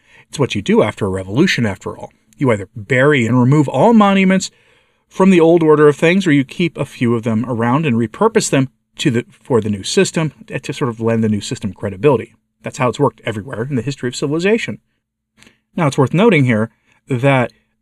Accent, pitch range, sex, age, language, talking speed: American, 110-150 Hz, male, 40-59, English, 205 wpm